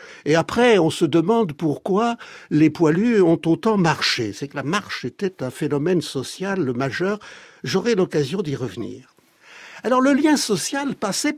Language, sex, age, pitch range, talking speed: French, male, 60-79, 155-230 Hz, 155 wpm